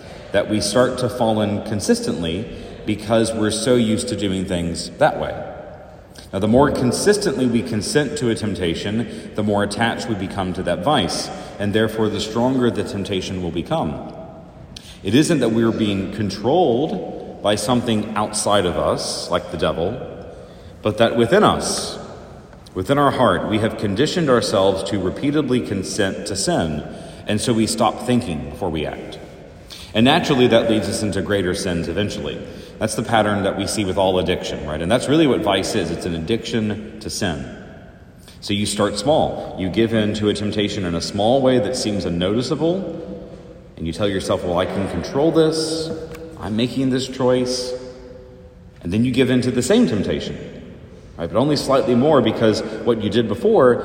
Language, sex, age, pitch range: English, male, 30-49, 100-125 Hz